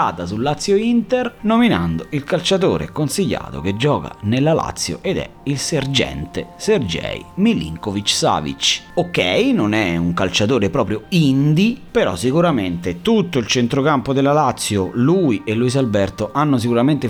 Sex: male